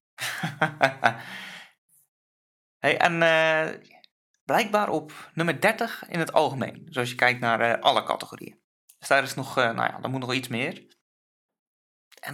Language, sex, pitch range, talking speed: Dutch, male, 115-160 Hz, 140 wpm